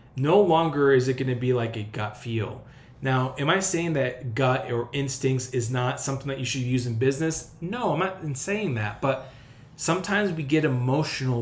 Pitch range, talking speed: 120-145 Hz, 200 wpm